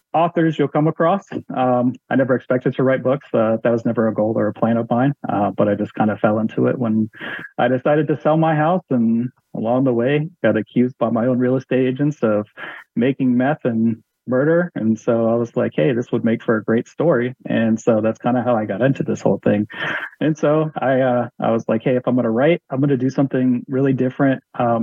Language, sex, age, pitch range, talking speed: English, male, 30-49, 115-135 Hz, 245 wpm